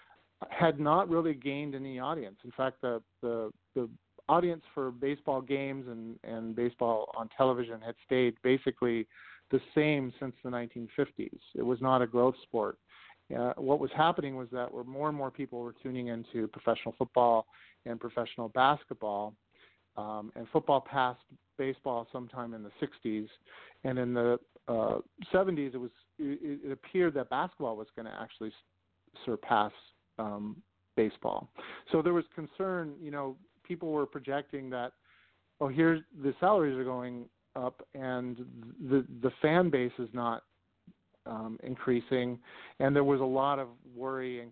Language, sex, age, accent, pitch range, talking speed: English, male, 40-59, American, 115-140 Hz, 155 wpm